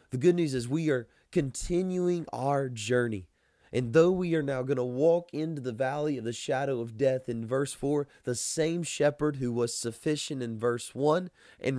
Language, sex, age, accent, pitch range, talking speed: English, male, 20-39, American, 115-140 Hz, 195 wpm